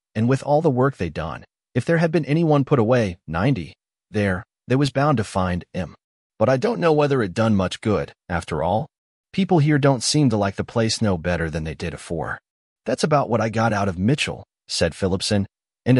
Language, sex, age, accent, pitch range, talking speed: English, male, 30-49, American, 100-135 Hz, 220 wpm